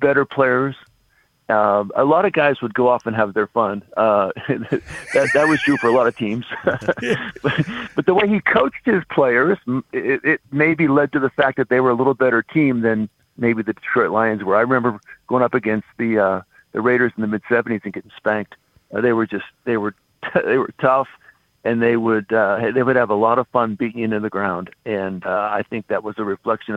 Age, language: 50-69, English